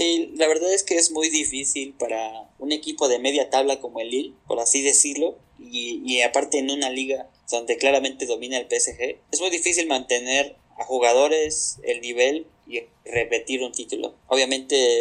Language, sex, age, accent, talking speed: Spanish, male, 20-39, Mexican, 175 wpm